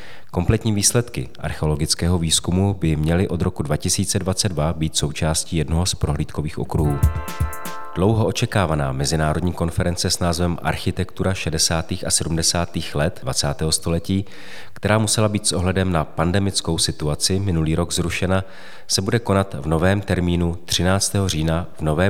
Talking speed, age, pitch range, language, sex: 135 wpm, 40-59, 80-95 Hz, Czech, male